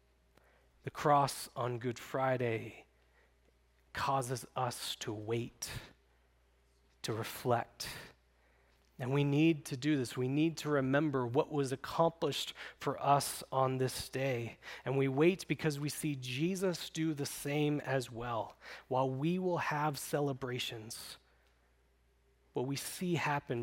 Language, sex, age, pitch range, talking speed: English, male, 30-49, 105-145 Hz, 125 wpm